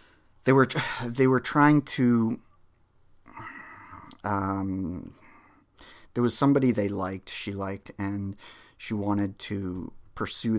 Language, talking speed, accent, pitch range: English, 110 wpm, American, 100-120 Hz